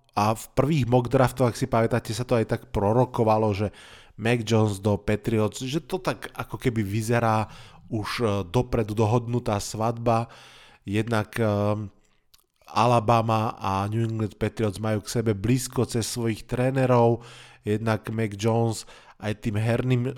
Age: 20-39